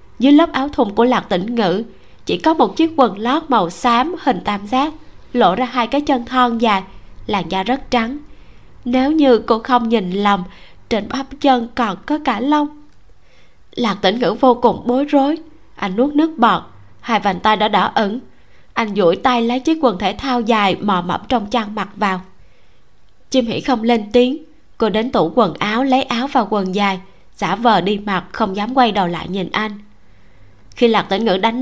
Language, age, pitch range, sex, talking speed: Vietnamese, 20-39, 200-255 Hz, female, 200 wpm